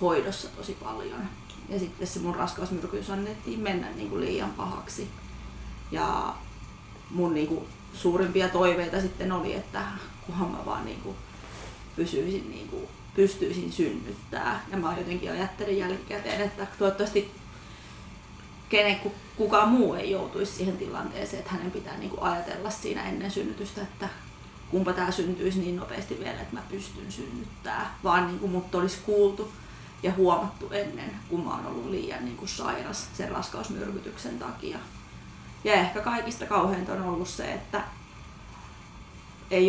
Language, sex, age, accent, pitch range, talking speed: Finnish, female, 20-39, native, 180-200 Hz, 140 wpm